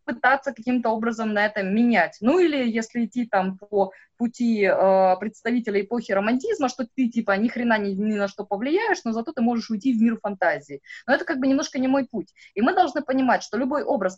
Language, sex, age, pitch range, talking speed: Russian, female, 20-39, 195-255 Hz, 210 wpm